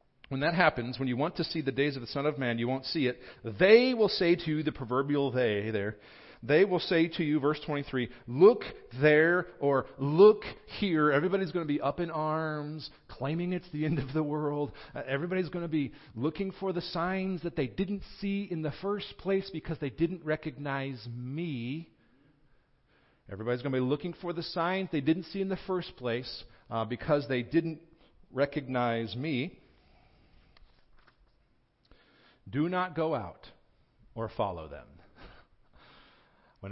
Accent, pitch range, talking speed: American, 125-160 Hz, 170 wpm